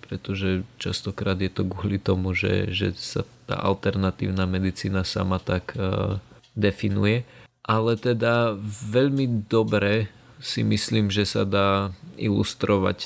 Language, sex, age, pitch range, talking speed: Slovak, male, 20-39, 95-110 Hz, 120 wpm